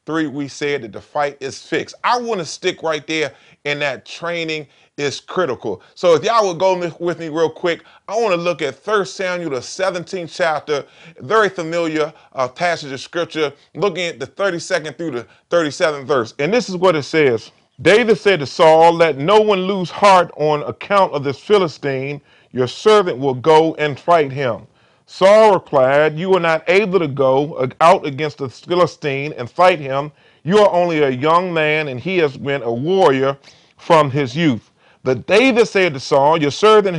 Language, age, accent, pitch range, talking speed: English, 30-49, American, 145-185 Hz, 185 wpm